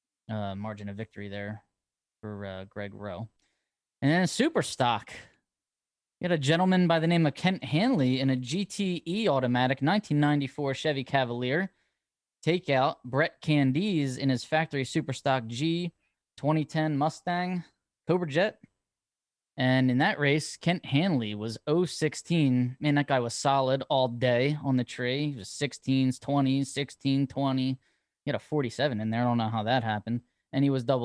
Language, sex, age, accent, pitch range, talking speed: English, male, 10-29, American, 125-155 Hz, 160 wpm